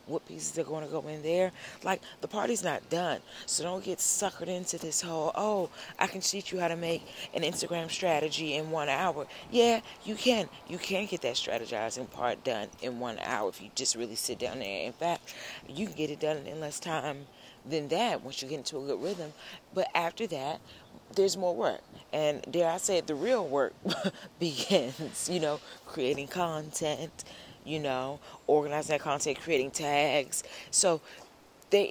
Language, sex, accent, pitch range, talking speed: English, female, American, 145-170 Hz, 195 wpm